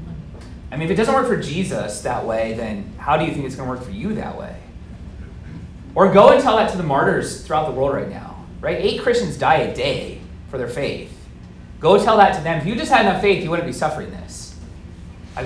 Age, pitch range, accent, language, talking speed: 30-49, 140-215 Hz, American, English, 235 wpm